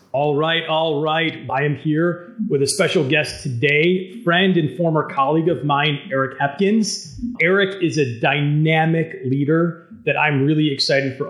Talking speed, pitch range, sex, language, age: 160 wpm, 130-165 Hz, male, English, 30-49